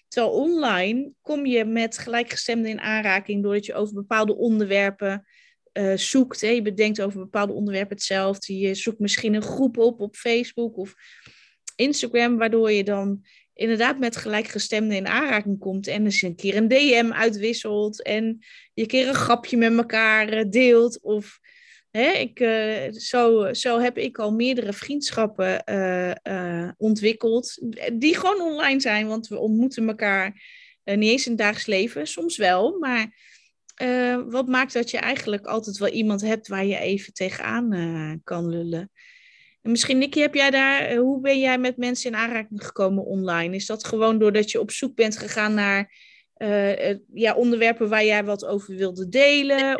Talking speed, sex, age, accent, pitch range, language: 170 wpm, female, 20-39, Dutch, 200-245 Hz, Dutch